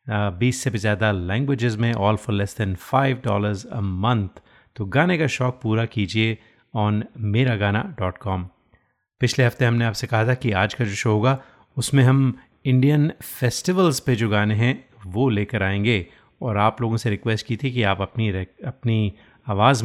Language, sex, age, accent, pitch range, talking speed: Hindi, male, 30-49, native, 105-130 Hz, 185 wpm